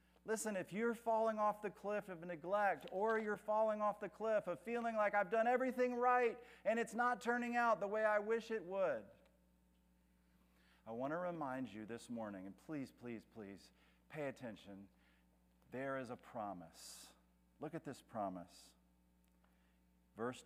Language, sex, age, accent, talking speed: English, male, 40-59, American, 160 wpm